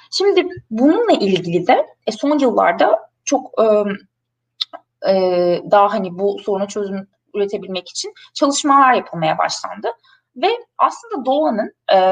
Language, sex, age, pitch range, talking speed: Turkish, female, 20-39, 185-285 Hz, 100 wpm